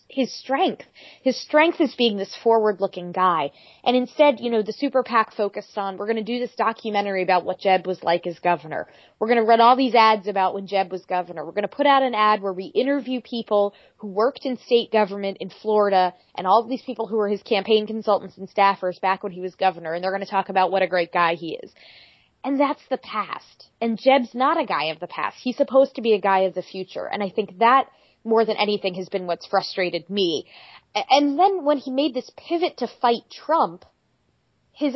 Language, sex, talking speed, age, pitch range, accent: English, female, 225 wpm, 20-39, 195-250 Hz, American